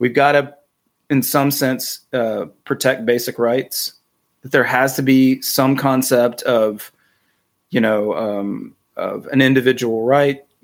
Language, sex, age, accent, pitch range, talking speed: English, male, 30-49, American, 115-130 Hz, 135 wpm